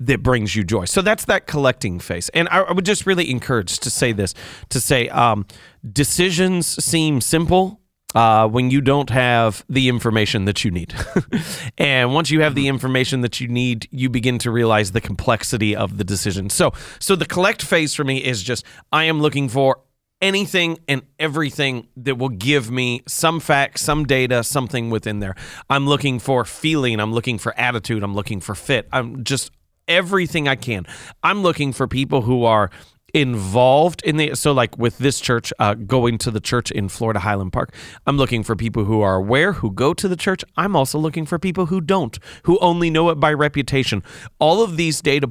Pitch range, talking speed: 110-150 Hz, 195 wpm